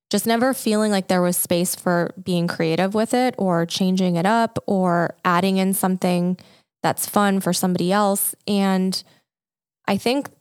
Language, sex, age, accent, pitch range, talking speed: English, female, 20-39, American, 180-215 Hz, 160 wpm